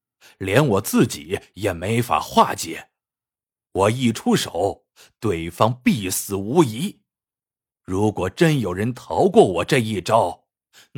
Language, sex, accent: Chinese, male, native